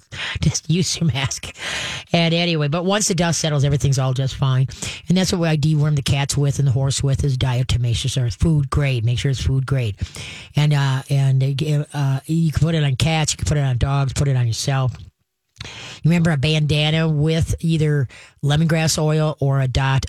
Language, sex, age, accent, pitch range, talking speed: English, female, 40-59, American, 135-155 Hz, 205 wpm